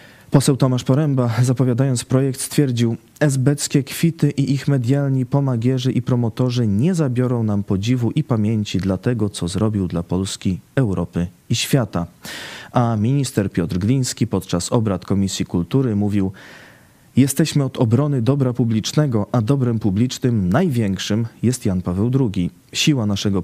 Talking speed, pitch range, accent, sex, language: 135 wpm, 105-135 Hz, native, male, Polish